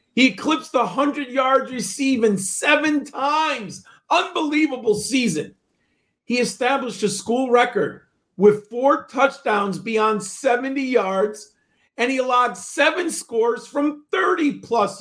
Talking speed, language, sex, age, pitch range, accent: 110 wpm, English, male, 50-69, 200-255 Hz, American